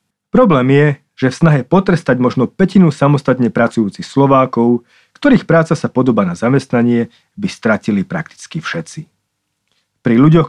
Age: 40-59